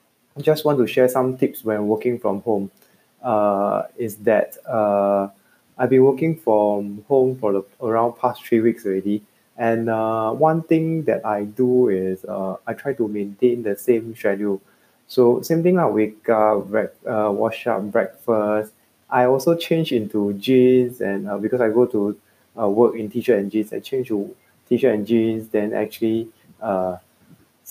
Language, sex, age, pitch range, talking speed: English, male, 20-39, 105-130 Hz, 175 wpm